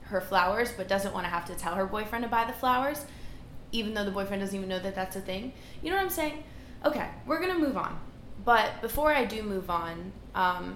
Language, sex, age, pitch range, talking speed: English, female, 20-39, 185-240 Hz, 245 wpm